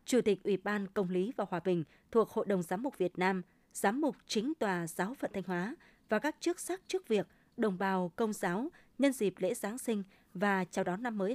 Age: 20-39